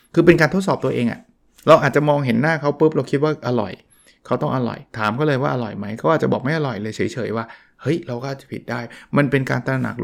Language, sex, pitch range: Thai, male, 115-150 Hz